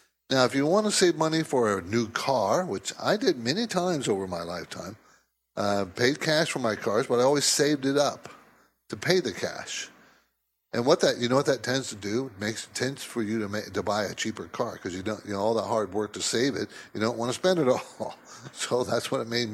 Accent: American